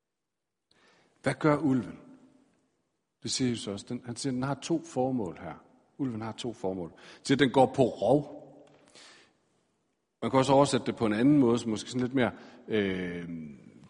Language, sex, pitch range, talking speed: Danish, male, 110-140 Hz, 175 wpm